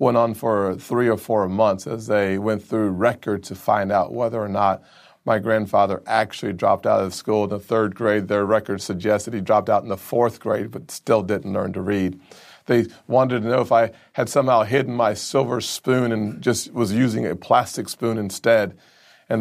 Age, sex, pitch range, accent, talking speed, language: 40-59, male, 105-130 Hz, American, 205 wpm, English